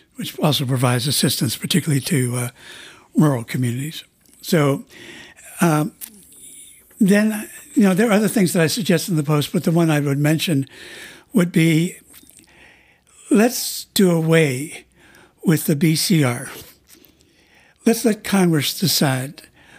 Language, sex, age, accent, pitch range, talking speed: English, male, 60-79, American, 145-185 Hz, 125 wpm